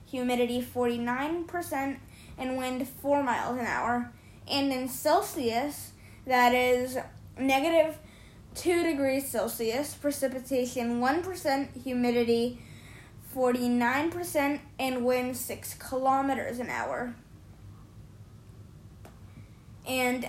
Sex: female